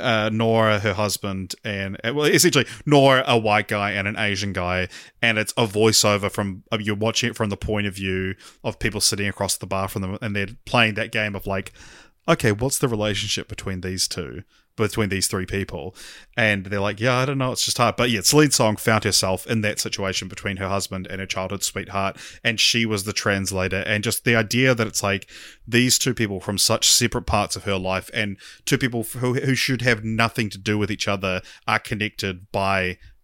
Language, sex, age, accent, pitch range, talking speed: English, male, 20-39, Australian, 100-115 Hz, 215 wpm